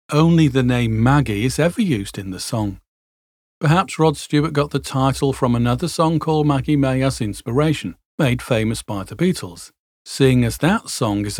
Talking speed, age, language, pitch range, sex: 180 wpm, 40-59, English, 110-150 Hz, male